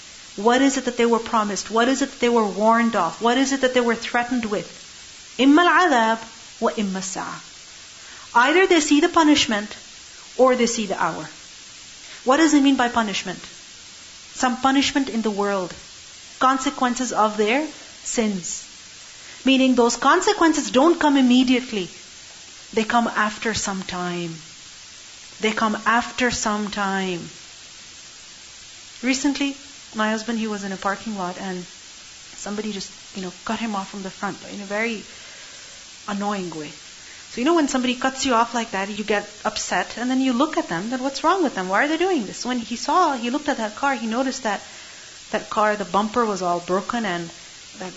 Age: 40-59